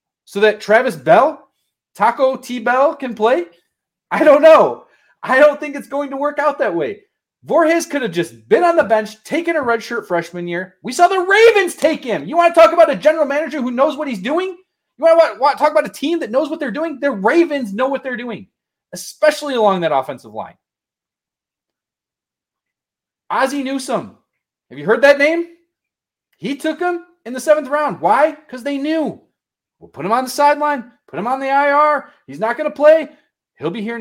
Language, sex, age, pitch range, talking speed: English, male, 30-49, 215-300 Hz, 200 wpm